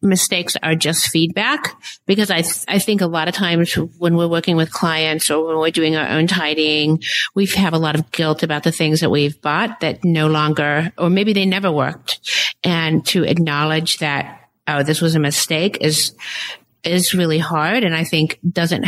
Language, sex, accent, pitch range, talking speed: English, female, American, 155-190 Hz, 195 wpm